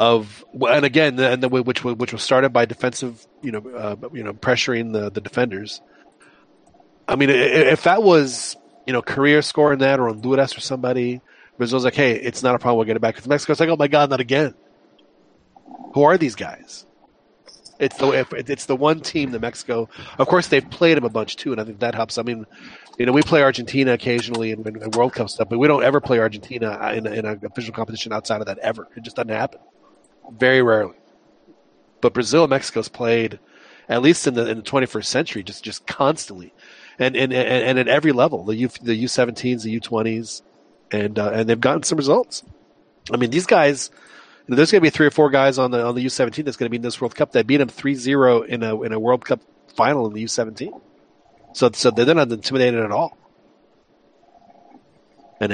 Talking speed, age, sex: 220 wpm, 30-49, male